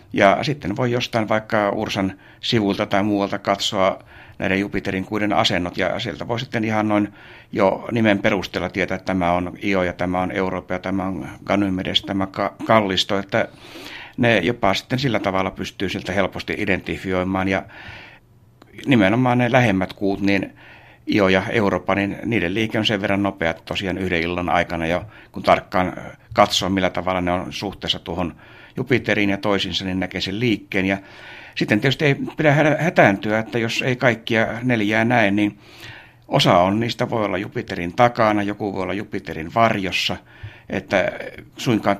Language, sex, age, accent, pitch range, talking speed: Finnish, male, 60-79, native, 95-110 Hz, 160 wpm